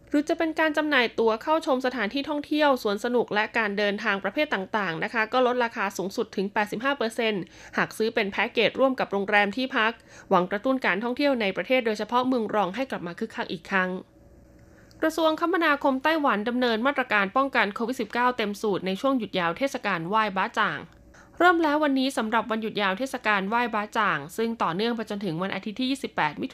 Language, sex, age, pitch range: Thai, female, 20-39, 195-250 Hz